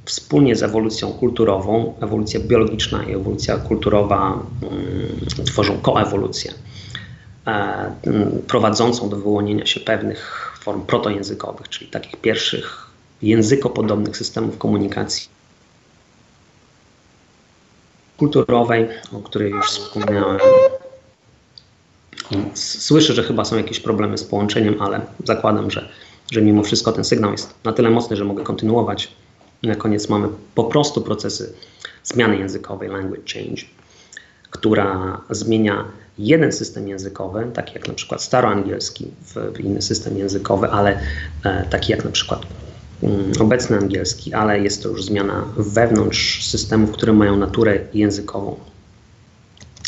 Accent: native